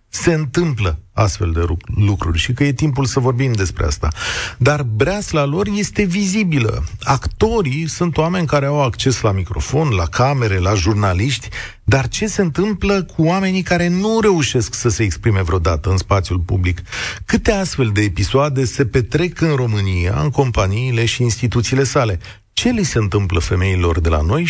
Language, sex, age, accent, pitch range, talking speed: Romanian, male, 40-59, native, 95-140 Hz, 165 wpm